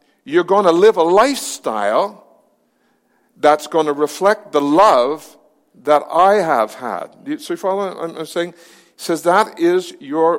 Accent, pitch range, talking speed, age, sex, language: American, 125-200 Hz, 155 wpm, 60-79, male, English